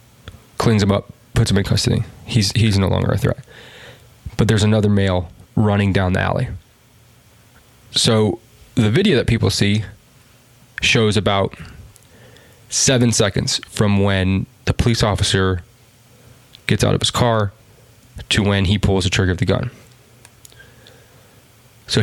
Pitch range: 100-120 Hz